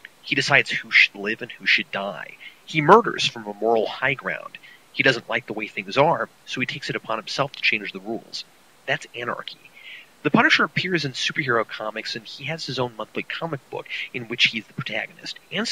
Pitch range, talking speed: 115-175 Hz, 215 wpm